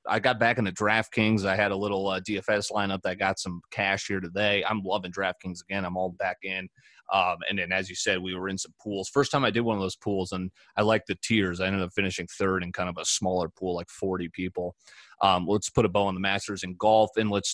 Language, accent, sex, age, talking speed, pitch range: English, American, male, 30-49, 260 wpm, 95-115 Hz